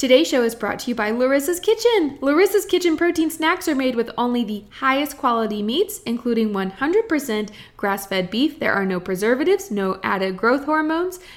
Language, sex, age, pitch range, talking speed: English, female, 20-39, 210-290 Hz, 175 wpm